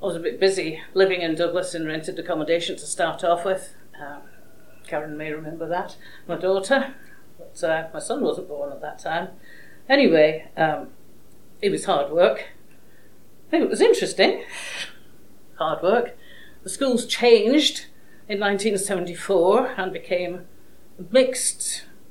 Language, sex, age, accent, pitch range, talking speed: English, female, 50-69, British, 165-220 Hz, 140 wpm